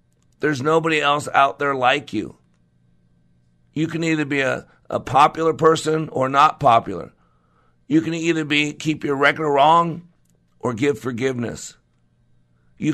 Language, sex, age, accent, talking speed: English, male, 50-69, American, 140 wpm